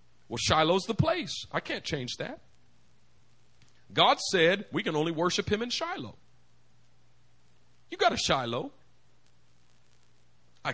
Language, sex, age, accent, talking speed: English, male, 40-59, American, 125 wpm